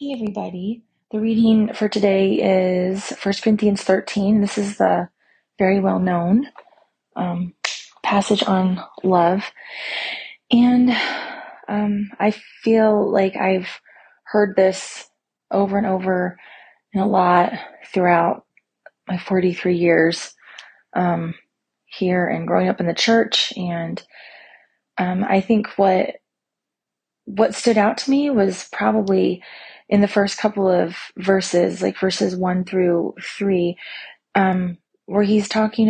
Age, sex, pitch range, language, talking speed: 30-49, female, 180-215 Hz, English, 120 wpm